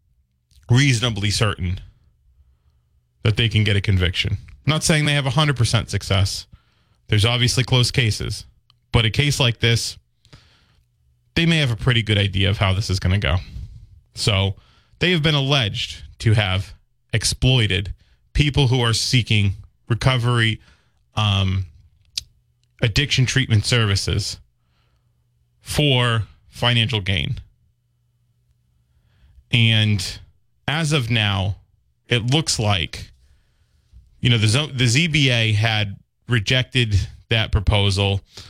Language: English